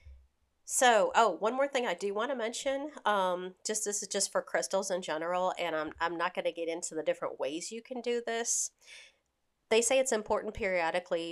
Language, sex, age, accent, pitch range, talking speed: English, female, 40-59, American, 170-220 Hz, 205 wpm